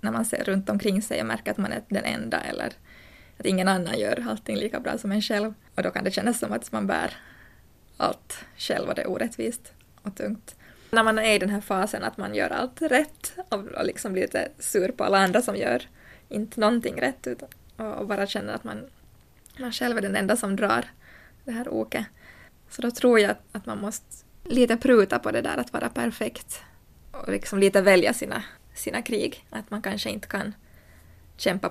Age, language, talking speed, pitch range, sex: 20-39, Swedish, 210 wpm, 195-225 Hz, female